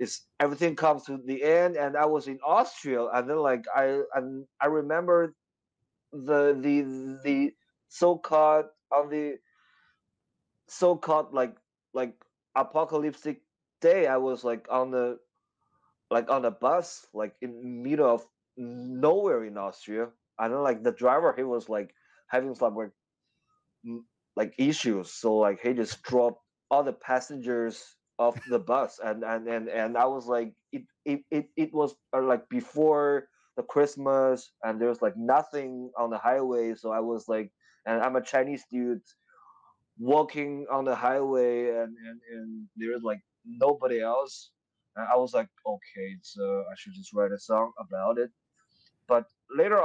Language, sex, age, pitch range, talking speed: English, male, 20-39, 115-150 Hz, 155 wpm